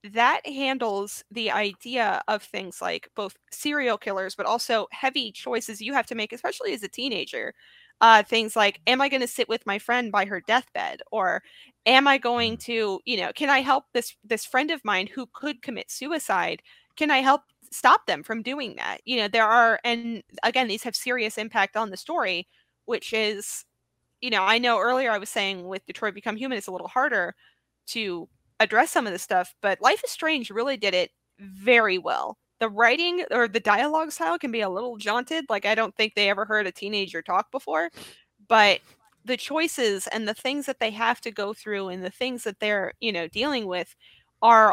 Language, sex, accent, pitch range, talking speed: English, female, American, 205-255 Hz, 205 wpm